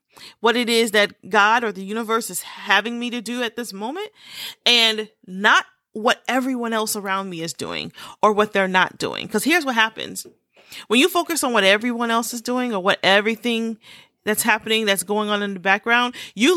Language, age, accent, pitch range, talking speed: English, 30-49, American, 205-240 Hz, 200 wpm